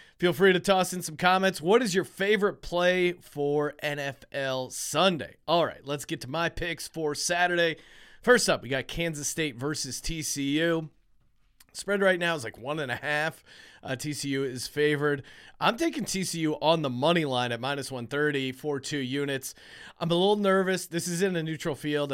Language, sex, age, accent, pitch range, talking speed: English, male, 30-49, American, 145-185 Hz, 185 wpm